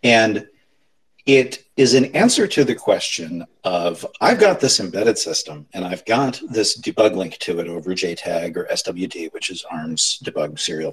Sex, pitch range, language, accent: male, 105-140 Hz, English, American